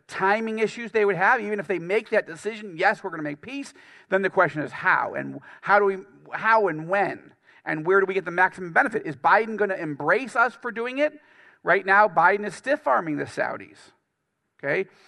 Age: 40-59